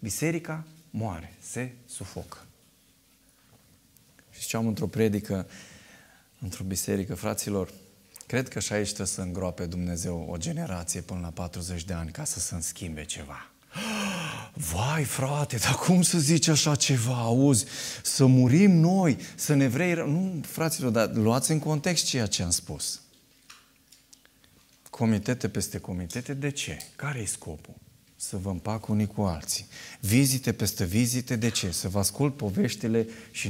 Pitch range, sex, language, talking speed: 100-135 Hz, male, Romanian, 145 wpm